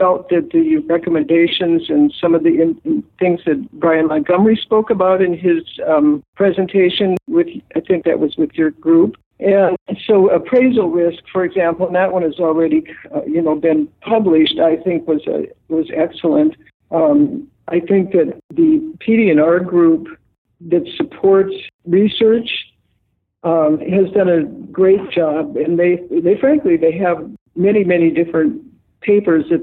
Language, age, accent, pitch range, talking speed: English, 60-79, American, 165-250 Hz, 155 wpm